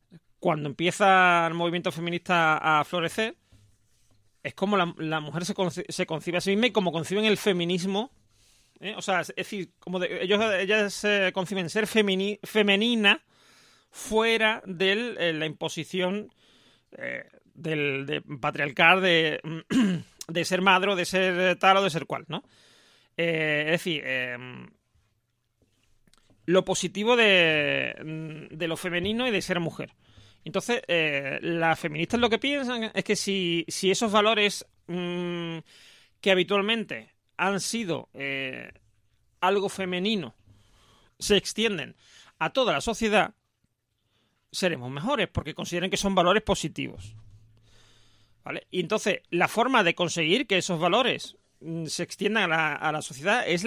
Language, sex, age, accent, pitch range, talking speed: Spanish, male, 30-49, Spanish, 150-195 Hz, 145 wpm